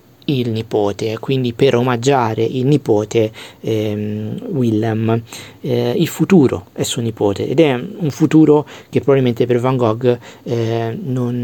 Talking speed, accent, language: 135 wpm, native, Italian